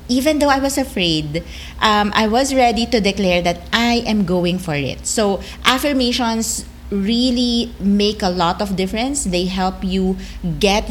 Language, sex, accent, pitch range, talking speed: English, female, Filipino, 170-225 Hz, 160 wpm